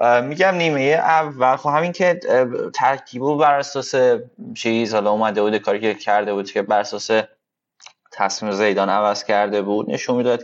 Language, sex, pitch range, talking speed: Persian, male, 100-115 Hz, 150 wpm